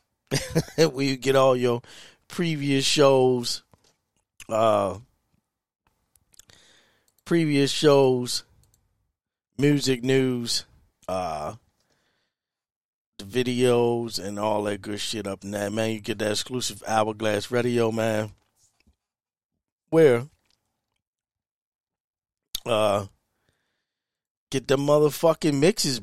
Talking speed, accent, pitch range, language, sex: 85 wpm, American, 120-165 Hz, English, male